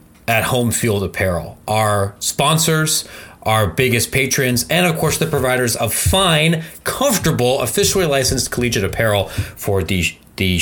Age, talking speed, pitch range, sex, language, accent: 30-49, 135 wpm, 110-165 Hz, male, English, American